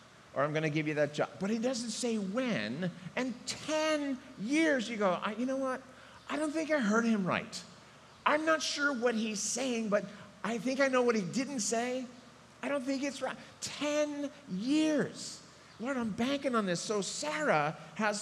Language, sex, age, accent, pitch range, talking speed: English, male, 50-69, American, 160-235 Hz, 190 wpm